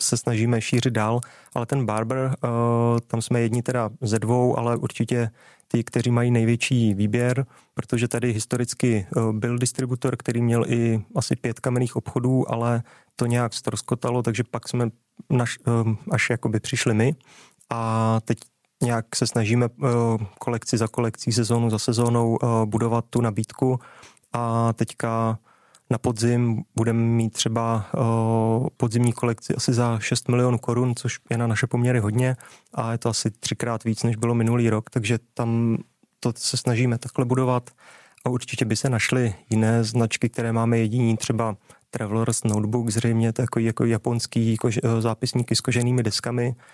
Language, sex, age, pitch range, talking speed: Czech, male, 30-49, 115-125 Hz, 150 wpm